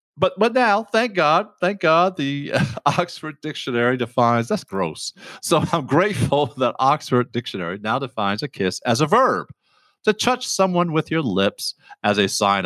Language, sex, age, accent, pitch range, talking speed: English, male, 50-69, American, 110-175 Hz, 165 wpm